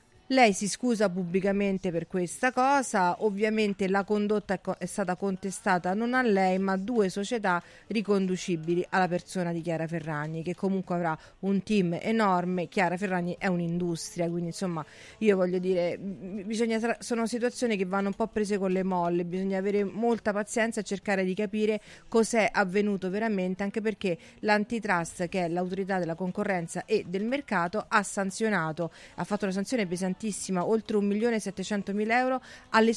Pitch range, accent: 180-220 Hz, native